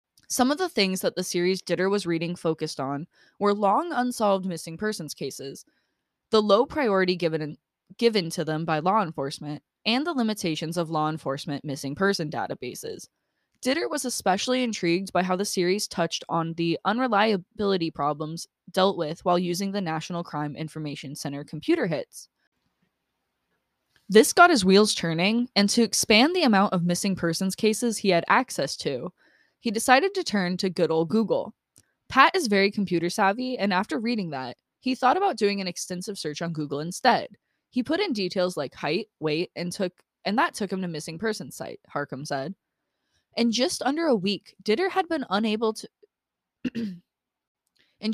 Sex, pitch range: female, 165-225 Hz